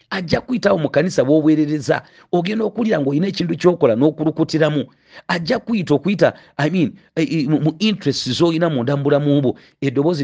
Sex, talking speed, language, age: male, 165 wpm, English, 40-59